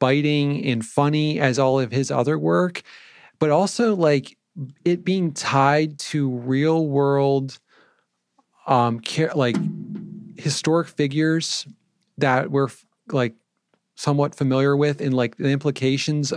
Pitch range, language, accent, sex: 125-155 Hz, English, American, male